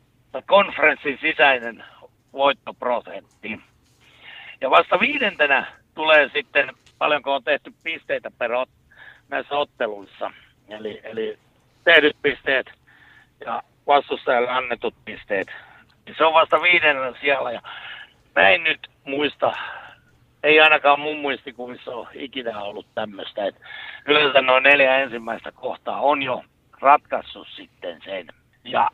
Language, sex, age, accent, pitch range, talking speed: Finnish, male, 60-79, native, 130-170 Hz, 115 wpm